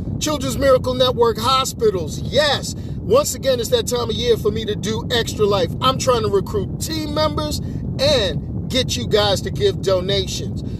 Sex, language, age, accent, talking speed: male, English, 50-69, American, 170 wpm